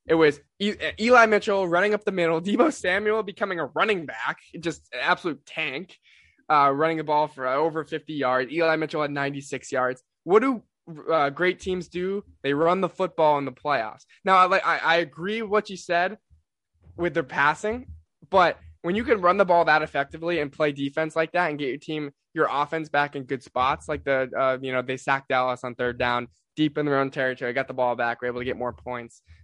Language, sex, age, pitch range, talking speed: English, male, 10-29, 130-175 Hz, 215 wpm